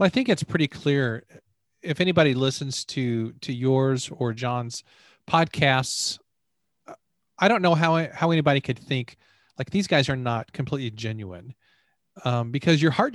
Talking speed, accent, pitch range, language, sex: 155 wpm, American, 120-160 Hz, English, male